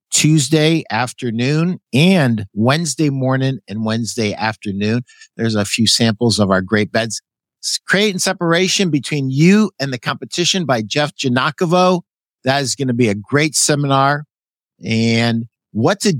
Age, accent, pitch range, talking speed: 50-69, American, 110-145 Hz, 145 wpm